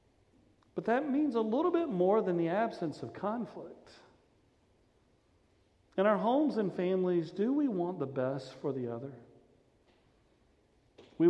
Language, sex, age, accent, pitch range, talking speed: English, male, 40-59, American, 130-175 Hz, 140 wpm